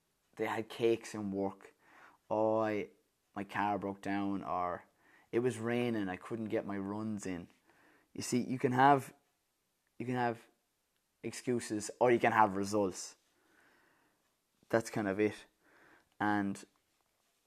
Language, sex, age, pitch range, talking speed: English, male, 20-39, 105-145 Hz, 135 wpm